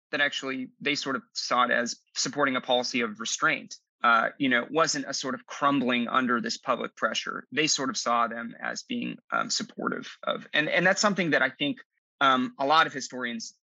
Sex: male